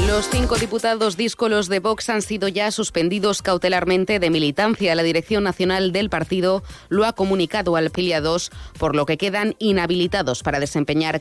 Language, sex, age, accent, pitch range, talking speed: Spanish, female, 20-39, Spanish, 155-190 Hz, 160 wpm